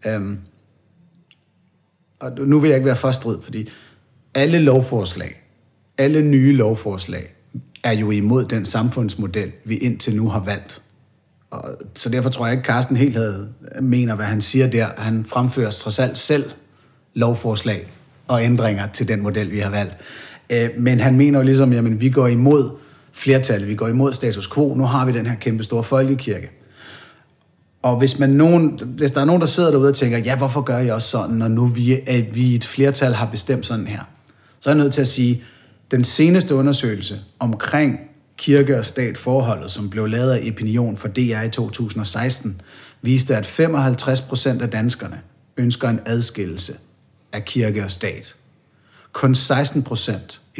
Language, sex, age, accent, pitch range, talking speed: Danish, male, 30-49, native, 110-135 Hz, 170 wpm